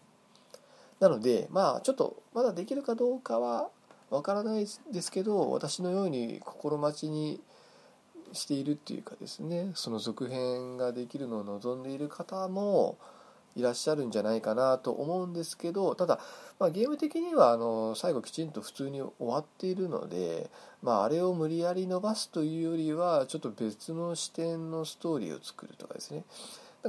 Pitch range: 130-200 Hz